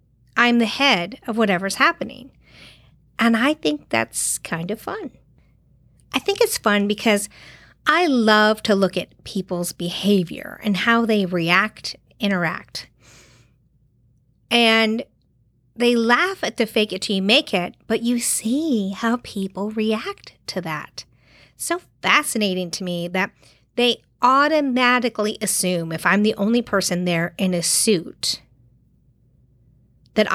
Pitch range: 180-240 Hz